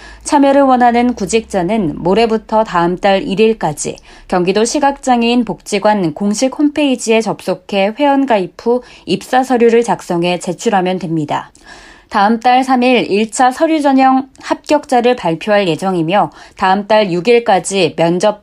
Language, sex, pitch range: Korean, female, 195-260 Hz